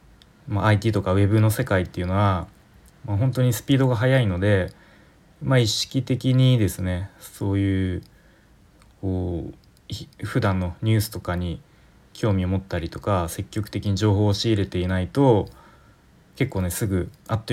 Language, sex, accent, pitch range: Japanese, male, native, 90-110 Hz